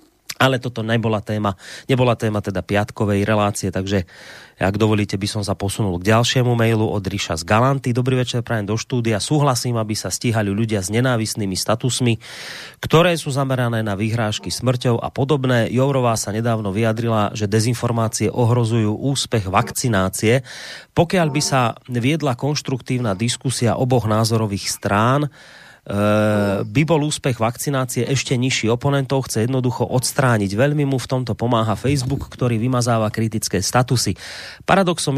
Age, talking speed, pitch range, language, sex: 30-49, 140 wpm, 110-130 Hz, Slovak, male